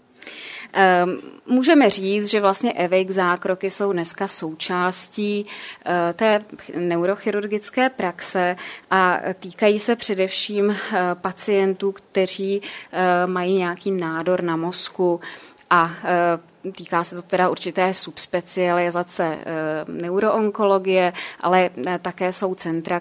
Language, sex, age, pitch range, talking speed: Czech, female, 20-39, 175-195 Hz, 90 wpm